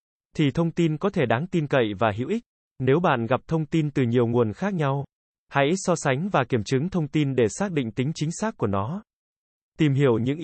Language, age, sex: Vietnamese, 20-39, male